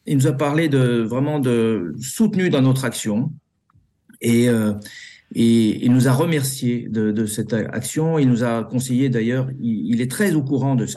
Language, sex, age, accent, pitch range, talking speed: French, male, 50-69, French, 100-130 Hz, 190 wpm